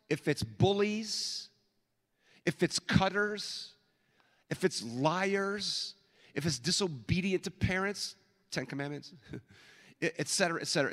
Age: 50-69